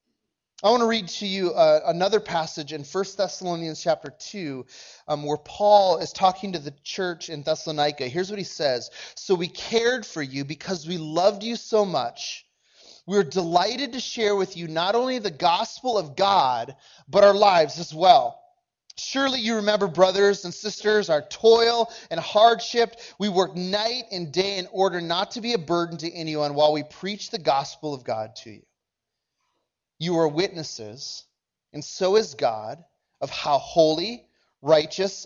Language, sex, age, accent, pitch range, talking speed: English, male, 30-49, American, 160-220 Hz, 170 wpm